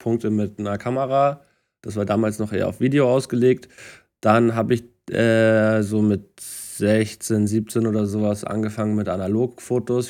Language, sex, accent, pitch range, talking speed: German, male, German, 105-120 Hz, 150 wpm